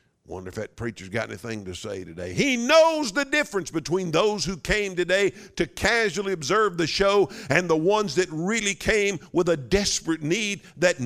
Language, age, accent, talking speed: English, 50-69, American, 185 wpm